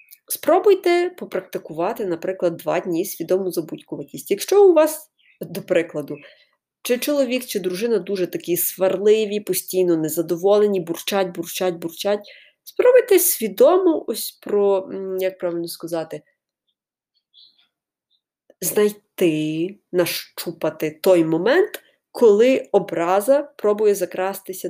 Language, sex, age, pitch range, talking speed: Ukrainian, female, 20-39, 175-240 Hz, 95 wpm